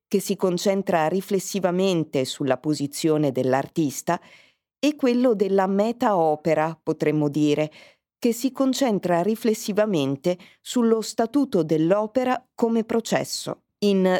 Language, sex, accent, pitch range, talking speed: Italian, female, native, 160-215 Hz, 95 wpm